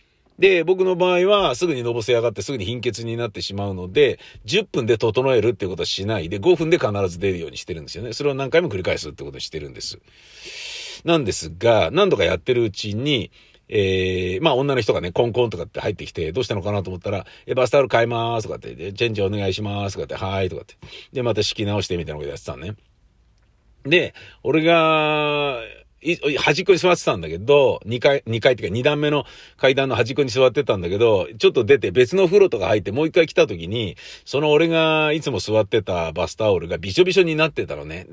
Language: Japanese